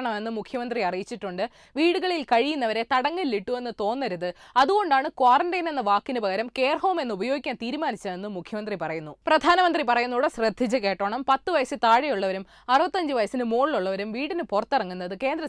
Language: Malayalam